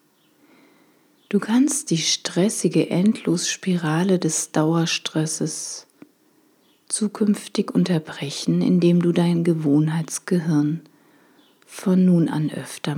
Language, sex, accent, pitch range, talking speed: German, female, German, 155-190 Hz, 80 wpm